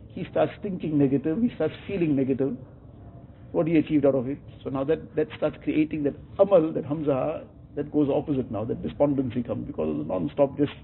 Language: English